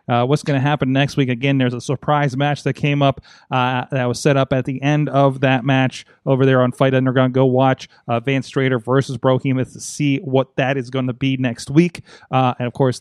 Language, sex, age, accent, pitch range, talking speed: English, male, 30-49, American, 125-145 Hz, 240 wpm